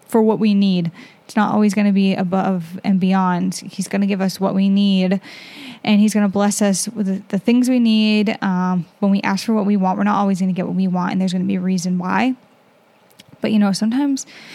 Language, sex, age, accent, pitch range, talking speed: English, female, 10-29, American, 190-220 Hz, 255 wpm